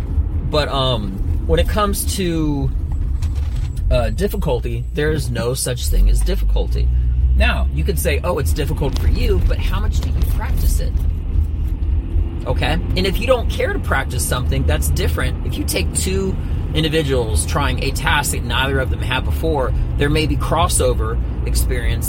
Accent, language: American, English